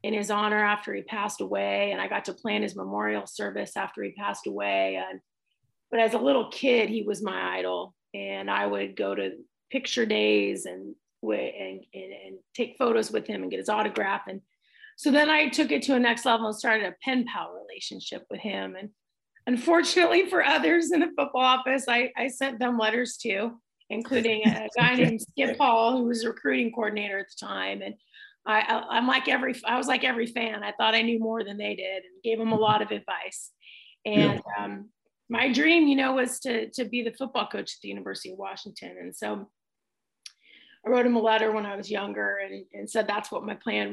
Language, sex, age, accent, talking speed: English, female, 30-49, American, 210 wpm